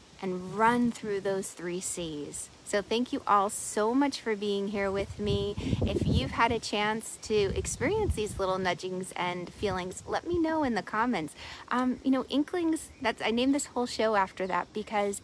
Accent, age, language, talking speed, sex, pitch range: American, 30-49, English, 185 wpm, female, 185-245 Hz